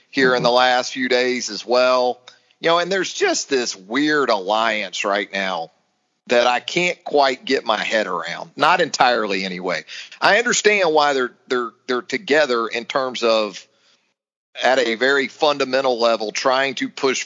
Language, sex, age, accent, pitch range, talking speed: English, male, 40-59, American, 110-140 Hz, 165 wpm